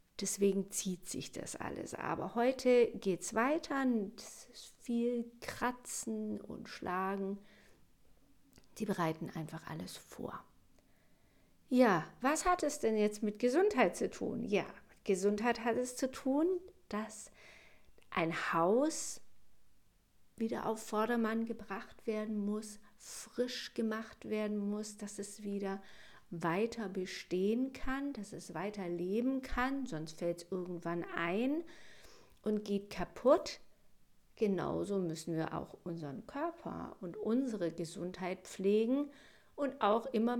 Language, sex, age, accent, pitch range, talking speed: German, female, 50-69, German, 195-240 Hz, 120 wpm